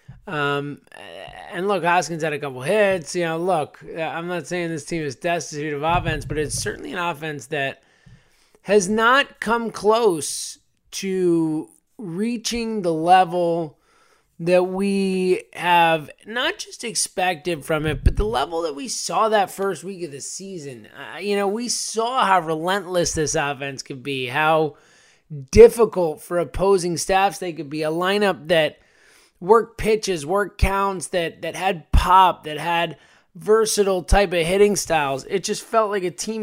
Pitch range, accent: 160-200 Hz, American